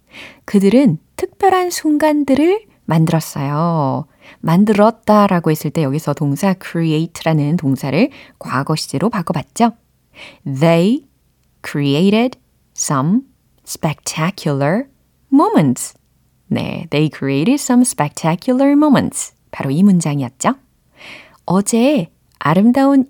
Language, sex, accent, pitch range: Korean, female, native, 160-270 Hz